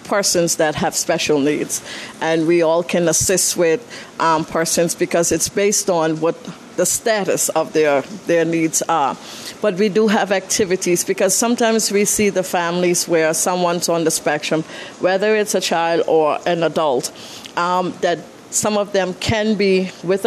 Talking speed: 165 wpm